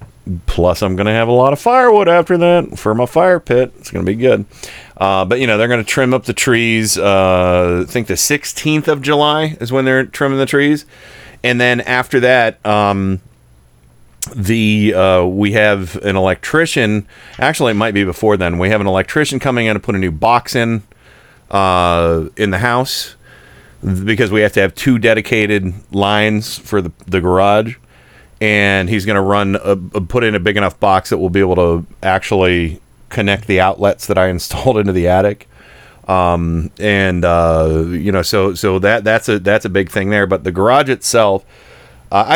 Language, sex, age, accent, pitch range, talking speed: English, male, 40-59, American, 95-125 Hz, 195 wpm